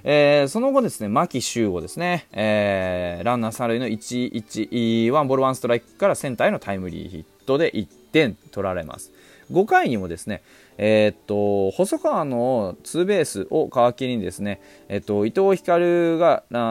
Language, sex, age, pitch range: Japanese, male, 20-39, 100-150 Hz